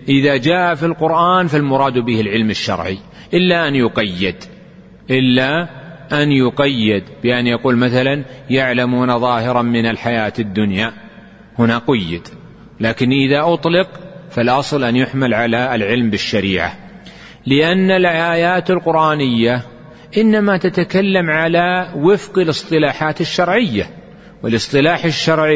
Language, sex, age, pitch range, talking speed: Arabic, male, 40-59, 125-165 Hz, 105 wpm